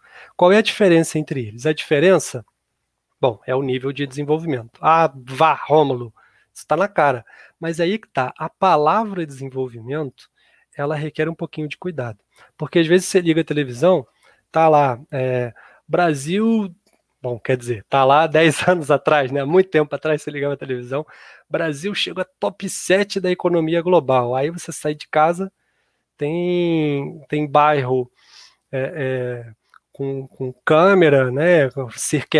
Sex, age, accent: male, 20-39, Brazilian